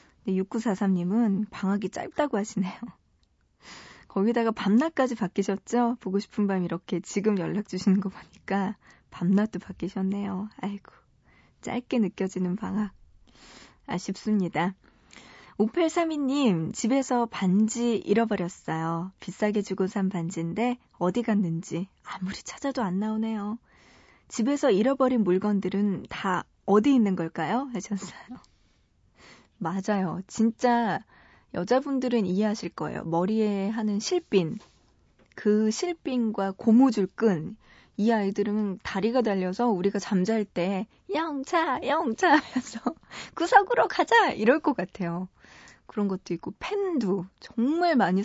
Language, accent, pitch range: Korean, native, 190-245 Hz